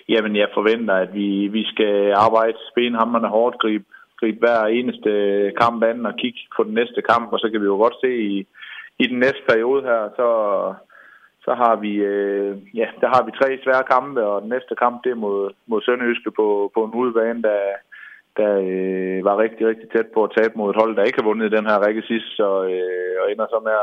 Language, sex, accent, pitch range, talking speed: Danish, male, native, 100-115 Hz, 220 wpm